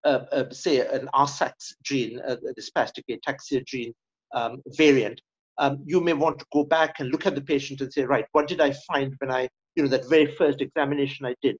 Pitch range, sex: 135-165 Hz, male